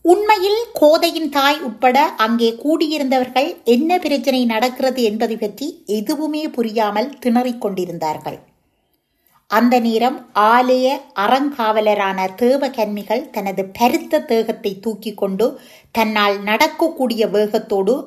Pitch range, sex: 205-275 Hz, female